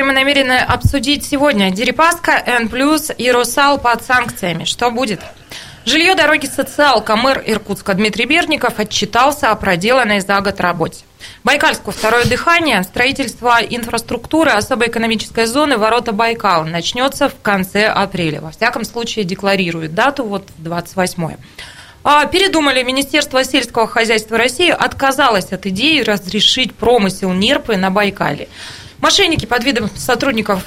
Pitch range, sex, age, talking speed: 200-270 Hz, female, 20-39, 125 wpm